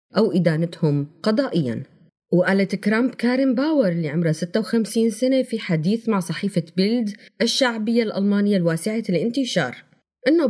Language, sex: Arabic, female